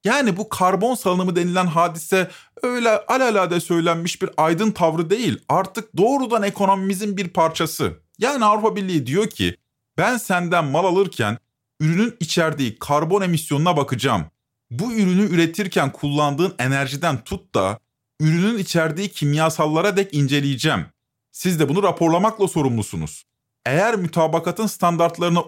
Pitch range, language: 145-205 Hz, Turkish